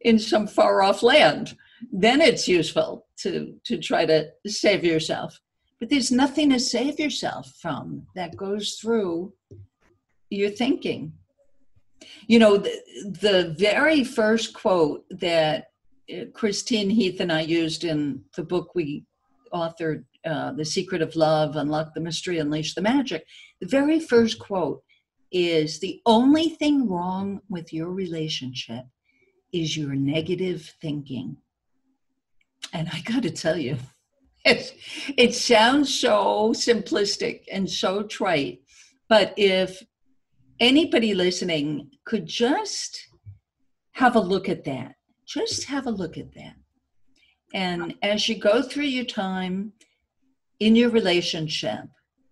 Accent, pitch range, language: American, 165-250 Hz, English